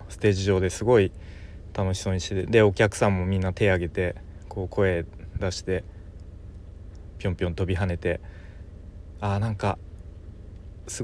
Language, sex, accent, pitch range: Japanese, male, native, 90-110 Hz